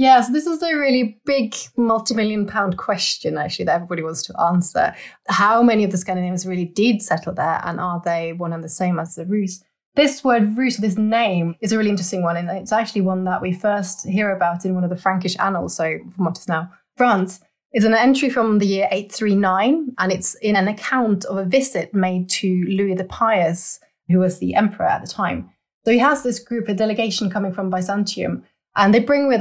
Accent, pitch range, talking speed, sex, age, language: British, 180-220 Hz, 220 wpm, female, 20-39, English